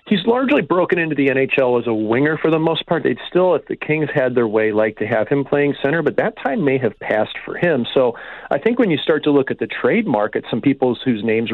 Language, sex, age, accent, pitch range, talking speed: English, male, 40-59, American, 115-155 Hz, 265 wpm